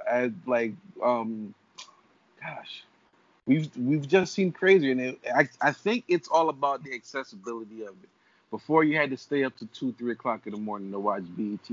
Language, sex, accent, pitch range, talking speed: English, male, American, 115-155 Hz, 180 wpm